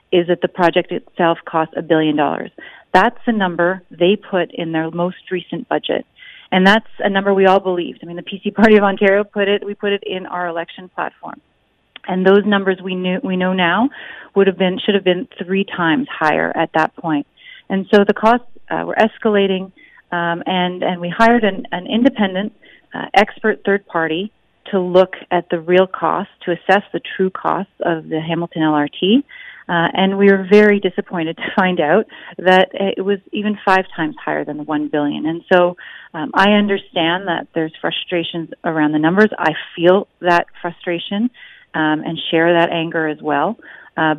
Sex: female